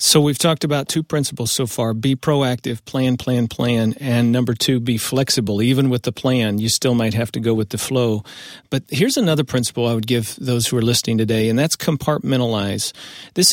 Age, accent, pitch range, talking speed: 40-59, American, 120-150 Hz, 210 wpm